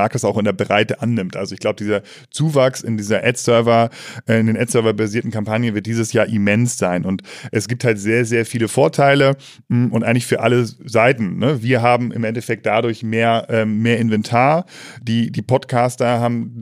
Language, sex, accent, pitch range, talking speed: German, male, German, 110-120 Hz, 175 wpm